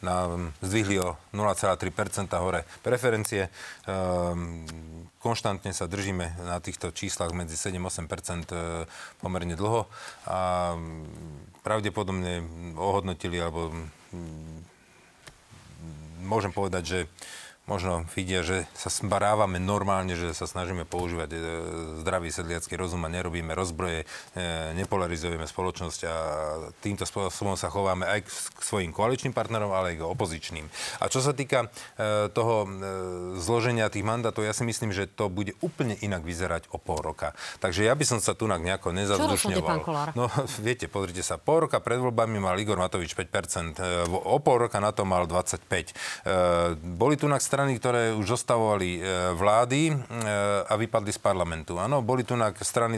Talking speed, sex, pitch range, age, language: 145 wpm, male, 85-105 Hz, 40-59, Slovak